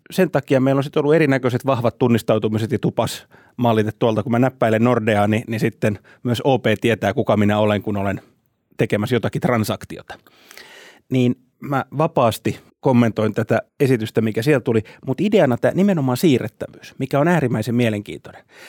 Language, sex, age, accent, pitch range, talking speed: Finnish, male, 30-49, native, 115-155 Hz, 150 wpm